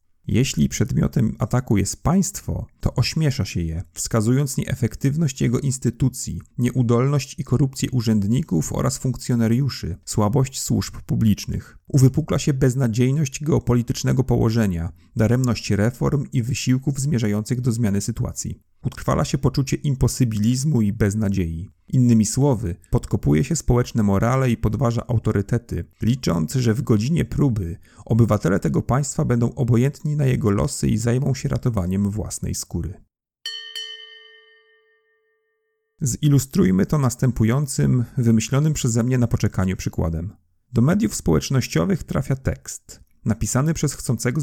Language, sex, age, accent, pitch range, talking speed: Polish, male, 40-59, native, 105-140 Hz, 115 wpm